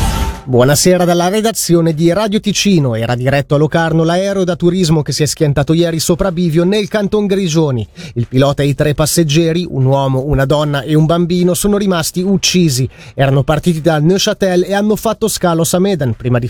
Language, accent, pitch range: Italian, native, 145-195 Hz